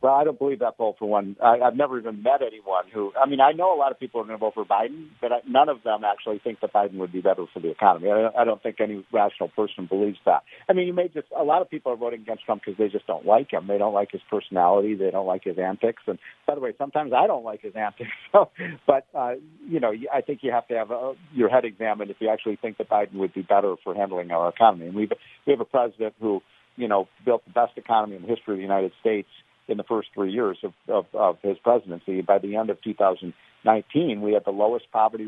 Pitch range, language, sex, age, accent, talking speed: 105-130 Hz, English, male, 50-69, American, 265 wpm